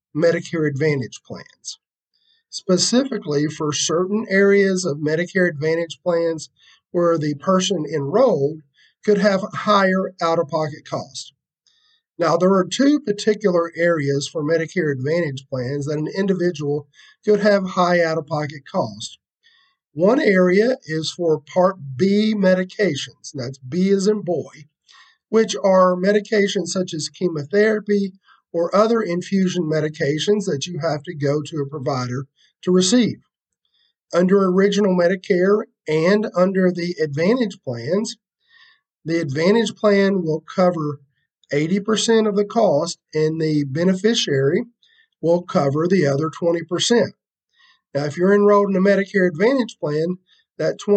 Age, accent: 50-69, American